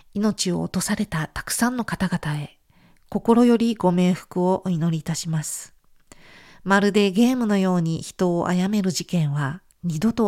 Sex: female